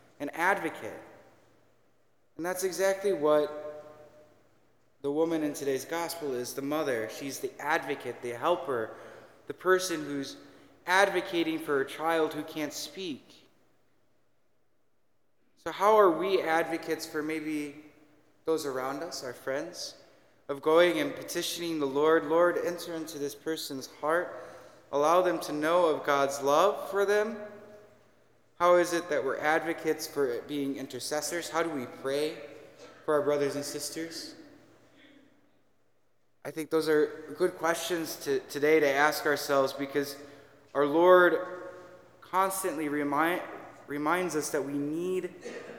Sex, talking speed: male, 130 wpm